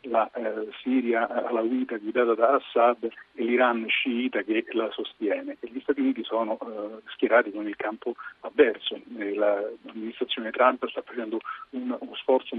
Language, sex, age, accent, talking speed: Italian, male, 40-59, native, 155 wpm